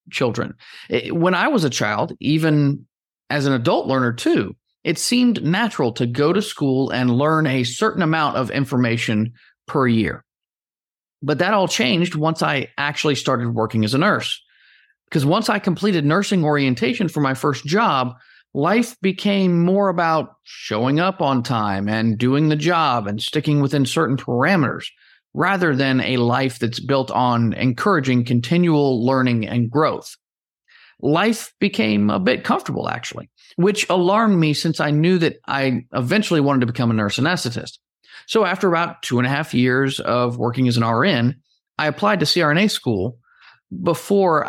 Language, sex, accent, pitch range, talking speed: English, male, American, 125-175 Hz, 160 wpm